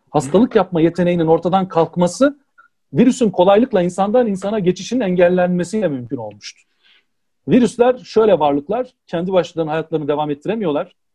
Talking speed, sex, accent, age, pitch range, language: 115 wpm, male, native, 40-59, 160-215 Hz, Turkish